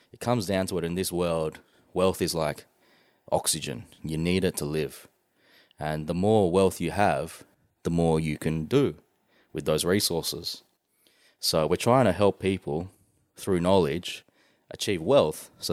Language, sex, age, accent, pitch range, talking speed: English, male, 20-39, Australian, 85-100 Hz, 160 wpm